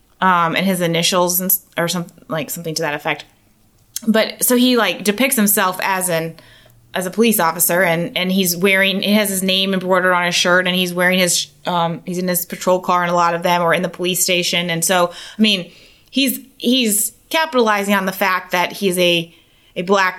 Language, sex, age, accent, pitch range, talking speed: English, female, 20-39, American, 170-195 Hz, 210 wpm